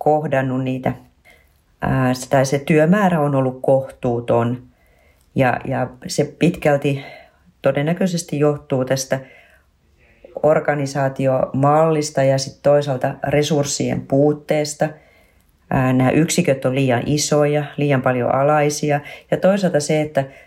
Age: 40-59